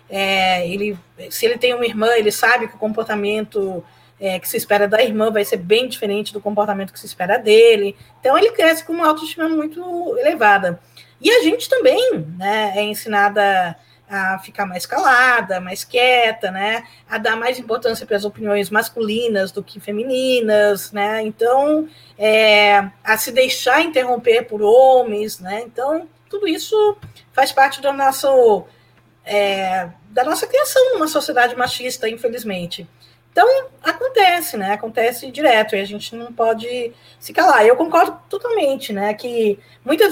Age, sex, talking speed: 20-39, female, 155 wpm